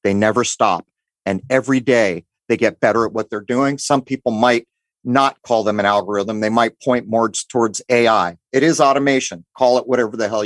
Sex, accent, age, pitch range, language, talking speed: male, American, 40-59, 115-150 Hz, English, 200 wpm